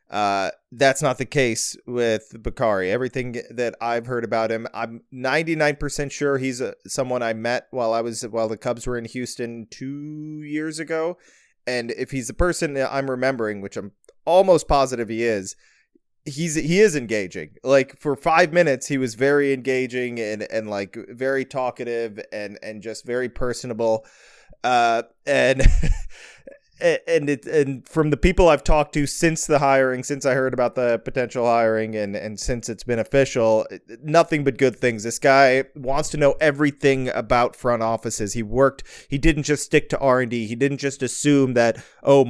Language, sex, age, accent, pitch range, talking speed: English, male, 20-39, American, 120-145 Hz, 175 wpm